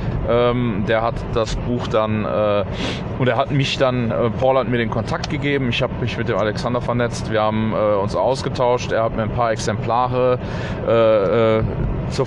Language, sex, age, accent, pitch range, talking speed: German, male, 30-49, German, 110-125 Hz, 190 wpm